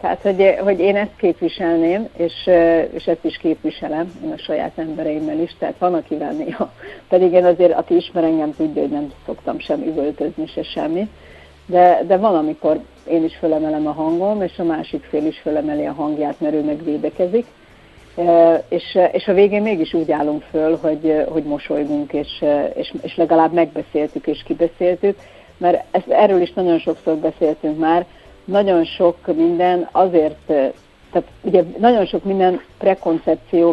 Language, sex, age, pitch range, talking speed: Hungarian, female, 50-69, 155-185 Hz, 160 wpm